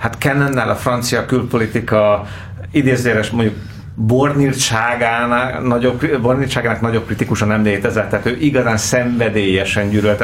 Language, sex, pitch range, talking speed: Hungarian, male, 105-125 Hz, 100 wpm